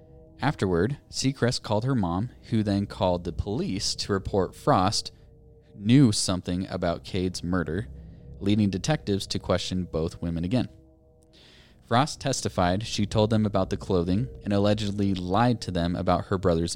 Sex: male